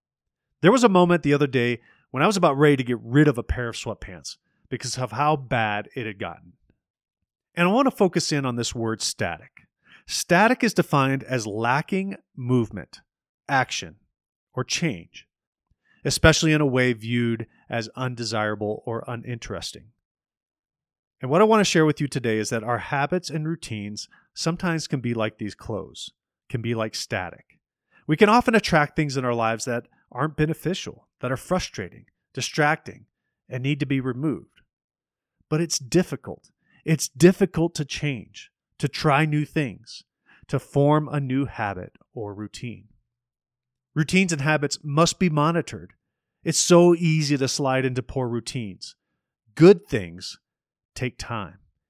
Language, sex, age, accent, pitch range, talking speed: English, male, 30-49, American, 115-155 Hz, 155 wpm